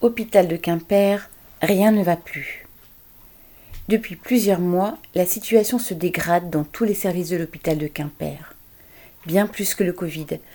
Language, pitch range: French, 160-195 Hz